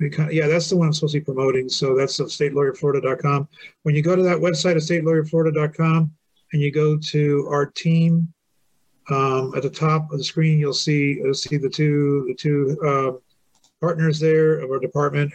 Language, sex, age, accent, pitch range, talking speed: English, male, 40-59, American, 135-155 Hz, 190 wpm